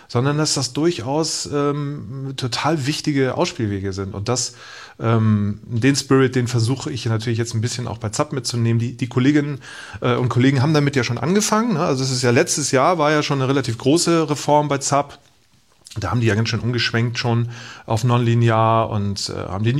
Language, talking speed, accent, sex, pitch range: German, 195 wpm, German, male, 110-135 Hz